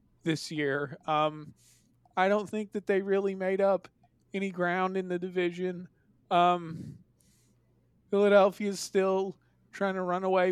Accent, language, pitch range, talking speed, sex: American, English, 165-205 Hz, 135 wpm, male